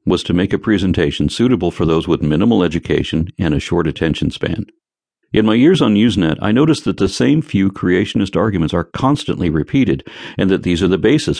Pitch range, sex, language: 75-95 Hz, male, English